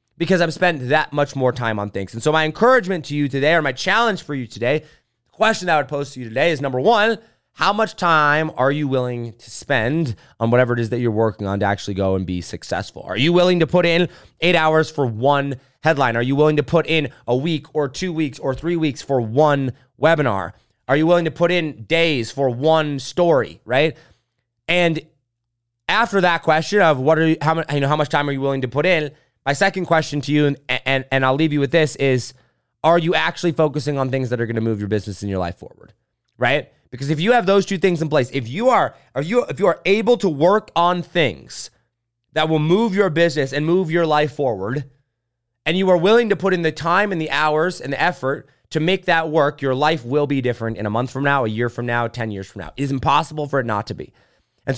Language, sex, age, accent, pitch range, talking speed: English, male, 30-49, American, 125-170 Hz, 245 wpm